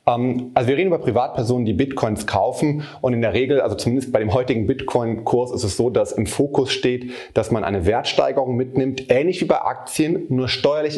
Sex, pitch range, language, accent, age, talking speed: male, 115-135 Hz, German, German, 30-49, 195 wpm